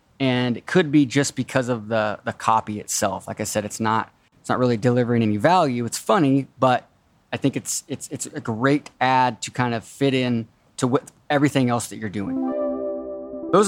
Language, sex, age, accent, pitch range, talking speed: English, male, 20-39, American, 110-135 Hz, 200 wpm